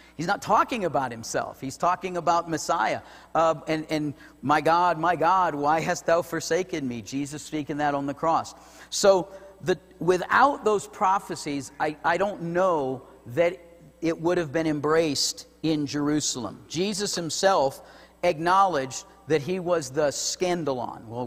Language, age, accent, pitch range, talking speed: English, 50-69, American, 140-175 Hz, 145 wpm